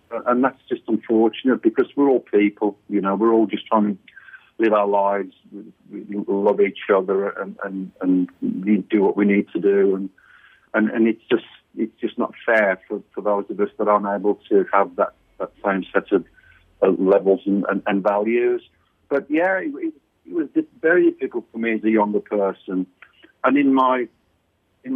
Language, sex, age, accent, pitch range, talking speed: English, male, 50-69, British, 100-135 Hz, 190 wpm